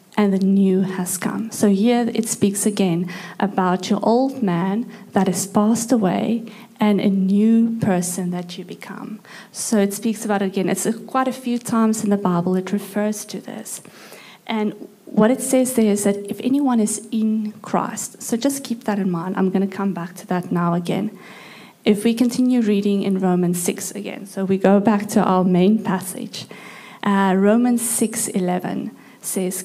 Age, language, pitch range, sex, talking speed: 30-49, English, 185-220 Hz, female, 180 wpm